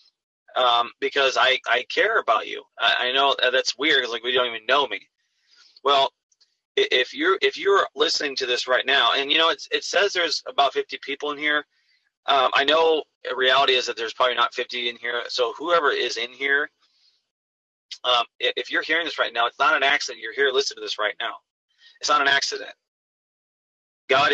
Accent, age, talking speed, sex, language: American, 30-49, 200 wpm, male, English